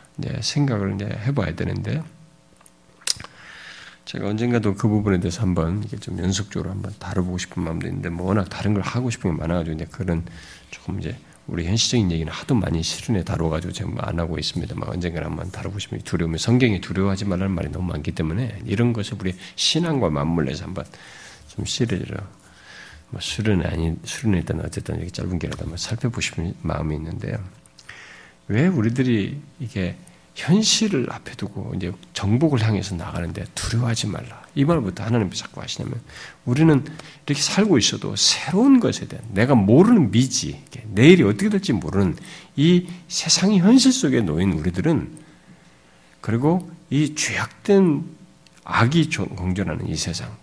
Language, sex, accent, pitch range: Korean, male, native, 90-145 Hz